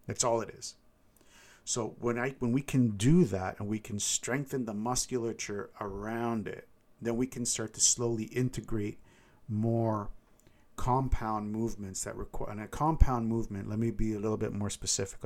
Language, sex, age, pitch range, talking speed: English, male, 50-69, 105-120 Hz, 175 wpm